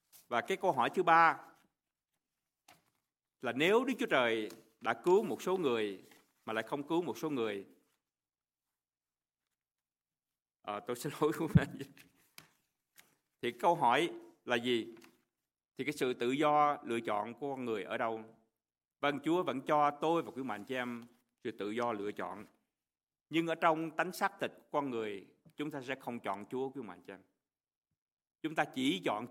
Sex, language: male, Vietnamese